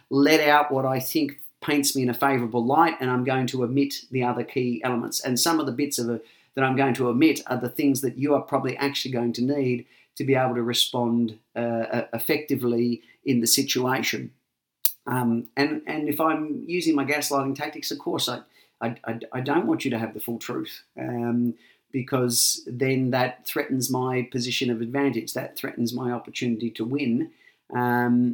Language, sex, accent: English, male, Australian